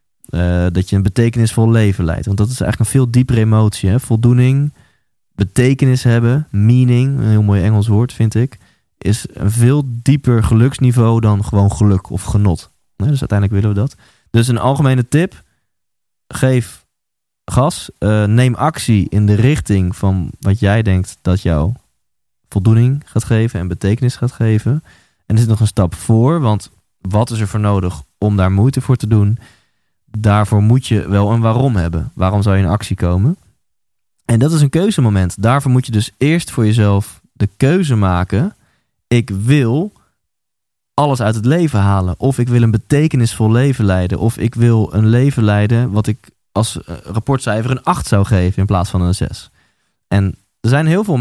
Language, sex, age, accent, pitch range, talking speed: Dutch, male, 20-39, Dutch, 100-125 Hz, 175 wpm